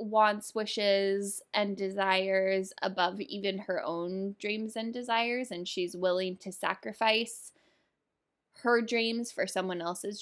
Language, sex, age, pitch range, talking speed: English, female, 10-29, 185-225 Hz, 125 wpm